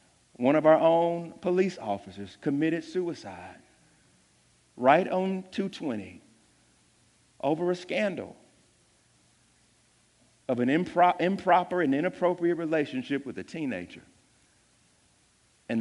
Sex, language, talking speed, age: male, English, 90 wpm, 50-69